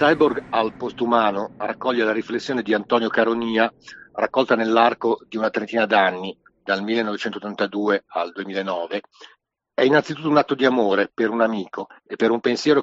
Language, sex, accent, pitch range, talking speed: Italian, male, native, 105-120 Hz, 150 wpm